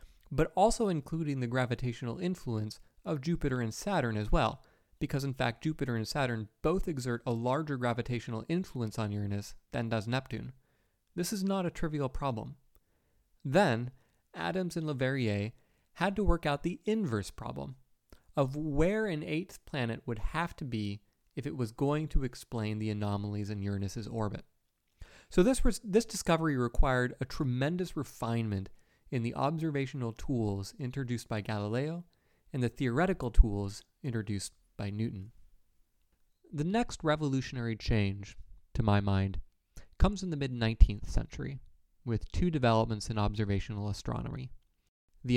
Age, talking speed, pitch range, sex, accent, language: 30-49, 145 wpm, 105-150 Hz, male, American, English